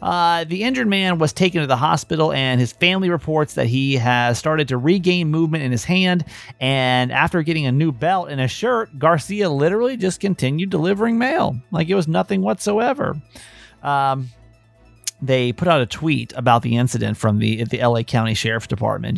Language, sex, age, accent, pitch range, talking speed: English, male, 30-49, American, 125-170 Hz, 185 wpm